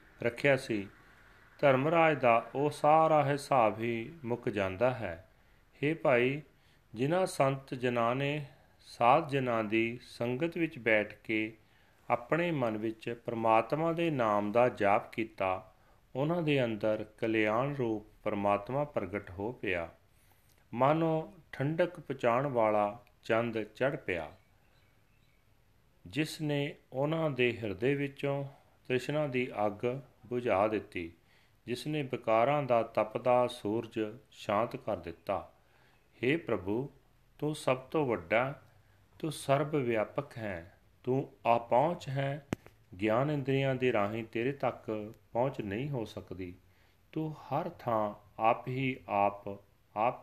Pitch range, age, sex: 105-140 Hz, 40-59, male